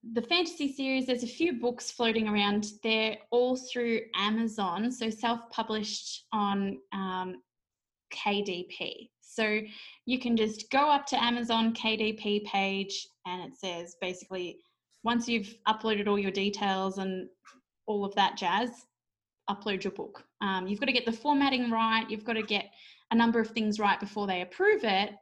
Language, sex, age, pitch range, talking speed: English, female, 20-39, 200-230 Hz, 160 wpm